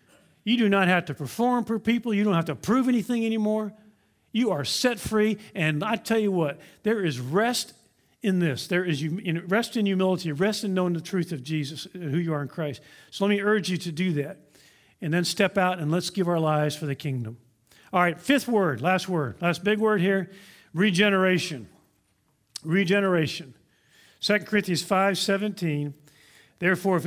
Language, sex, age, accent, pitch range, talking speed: English, male, 50-69, American, 145-205 Hz, 190 wpm